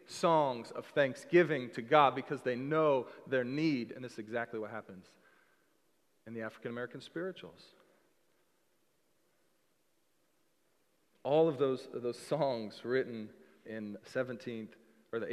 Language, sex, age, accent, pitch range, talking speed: English, male, 40-59, American, 125-175 Hz, 120 wpm